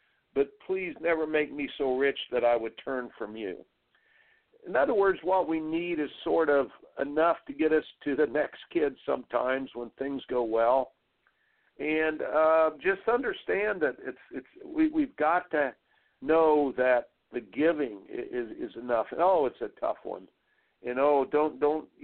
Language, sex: English, male